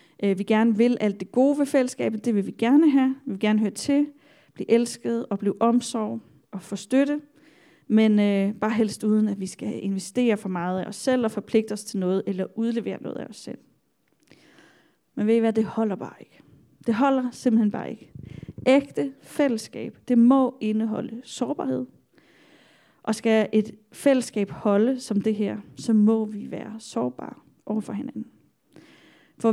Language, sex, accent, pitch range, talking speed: Danish, female, native, 205-245 Hz, 175 wpm